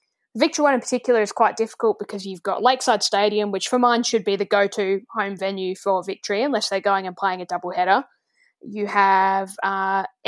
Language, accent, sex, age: English, Australian, female, 10-29